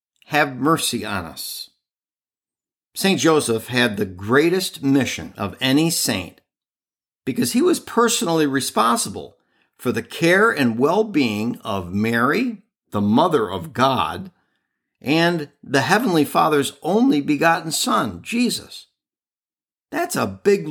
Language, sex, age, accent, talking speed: English, male, 50-69, American, 115 wpm